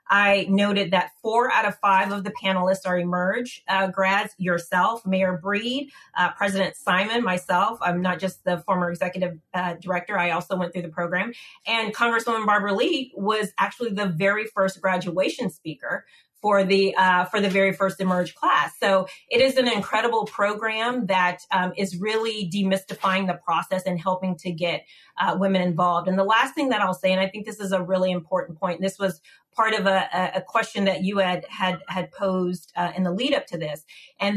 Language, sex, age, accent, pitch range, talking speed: English, female, 30-49, American, 185-215 Hz, 195 wpm